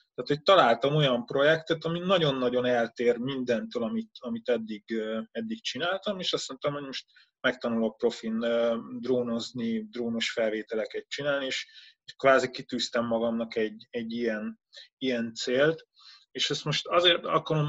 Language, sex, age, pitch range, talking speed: Hungarian, male, 20-39, 115-140 Hz, 130 wpm